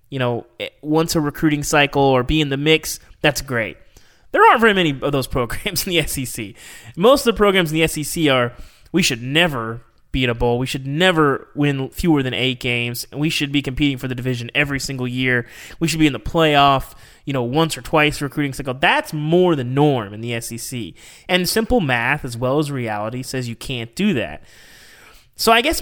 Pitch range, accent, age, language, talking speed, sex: 125-165 Hz, American, 20-39, English, 210 wpm, male